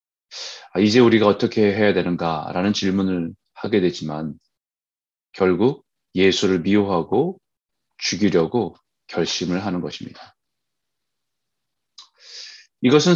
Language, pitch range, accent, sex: Korean, 95-130 Hz, native, male